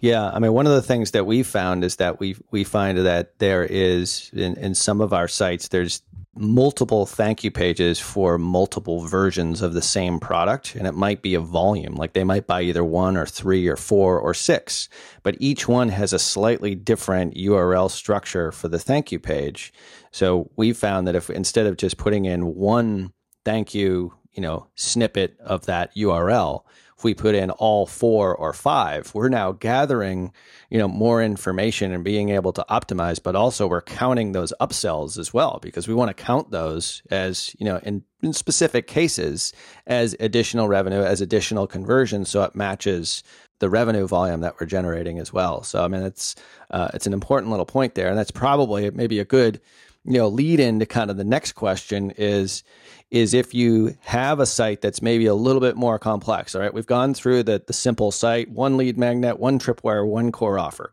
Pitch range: 95-115 Hz